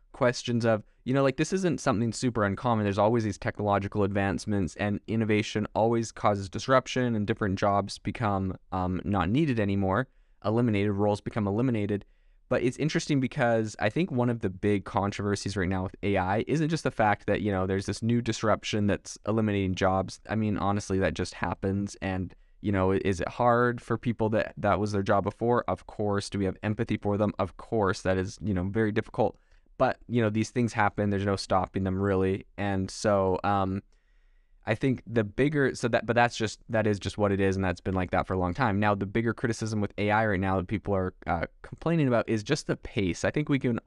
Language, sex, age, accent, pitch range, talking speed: English, male, 20-39, American, 95-115 Hz, 215 wpm